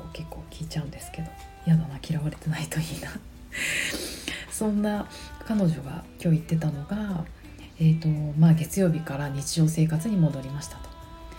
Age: 30-49